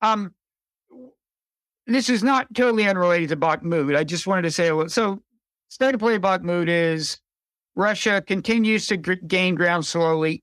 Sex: male